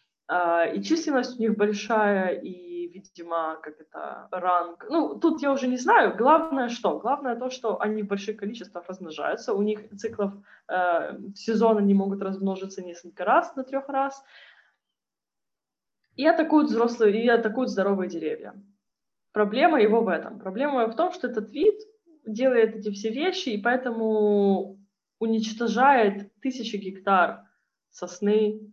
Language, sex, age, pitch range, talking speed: Ukrainian, female, 20-39, 185-245 Hz, 140 wpm